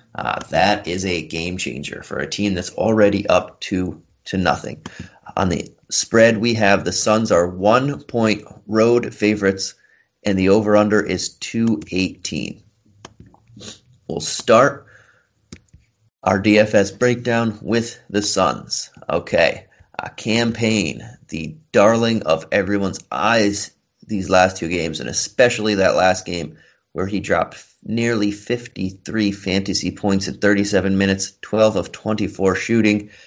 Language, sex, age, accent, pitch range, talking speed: English, male, 30-49, American, 95-110 Hz, 130 wpm